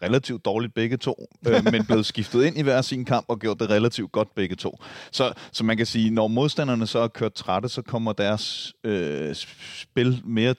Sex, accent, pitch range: male, native, 100-125 Hz